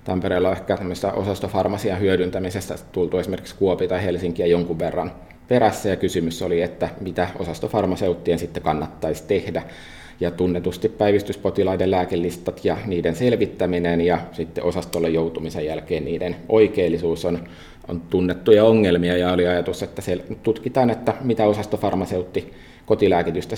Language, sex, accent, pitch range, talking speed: Finnish, male, native, 85-95 Hz, 125 wpm